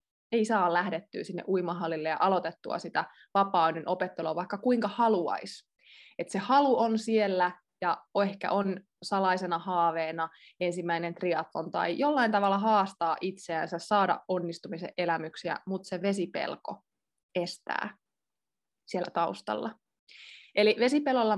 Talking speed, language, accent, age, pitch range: 110 wpm, Finnish, native, 20-39, 180-230 Hz